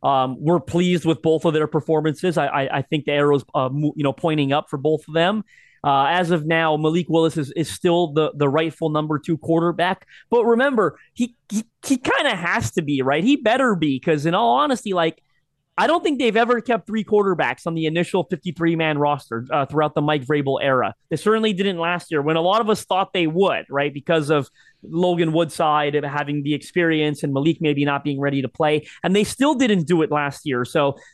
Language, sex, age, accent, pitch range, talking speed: English, male, 30-49, American, 150-210 Hz, 225 wpm